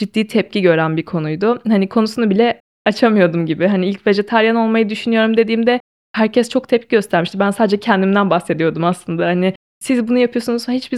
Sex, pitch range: female, 185-245 Hz